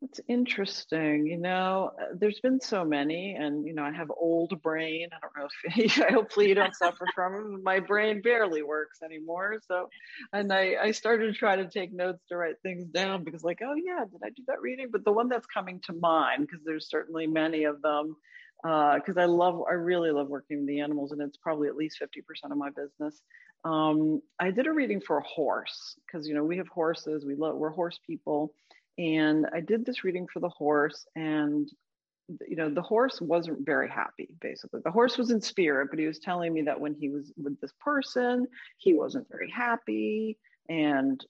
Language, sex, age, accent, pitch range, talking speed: English, female, 40-59, American, 150-210 Hz, 210 wpm